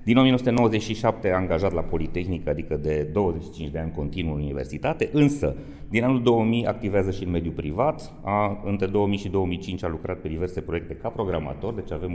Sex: male